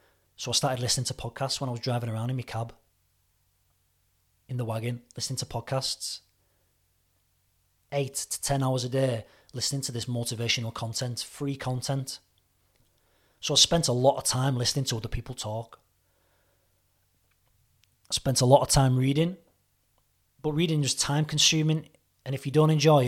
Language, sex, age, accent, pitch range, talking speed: English, male, 30-49, British, 95-130 Hz, 160 wpm